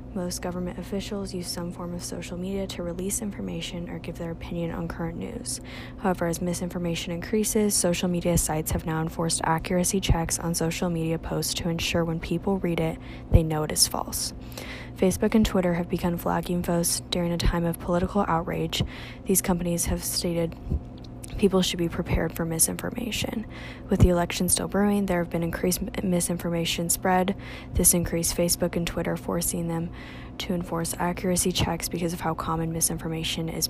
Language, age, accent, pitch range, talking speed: English, 10-29, American, 165-185 Hz, 175 wpm